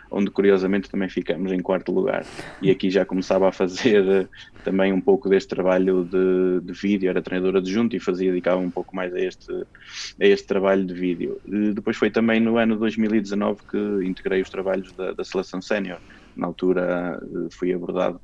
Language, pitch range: Portuguese, 90-100 Hz